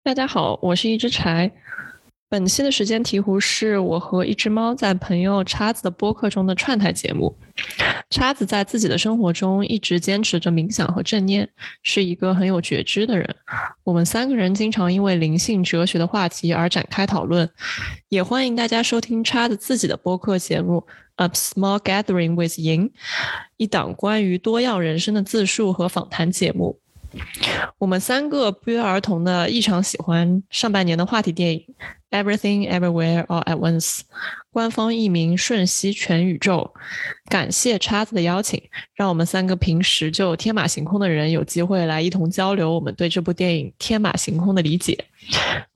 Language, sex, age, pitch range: Chinese, female, 20-39, 175-215 Hz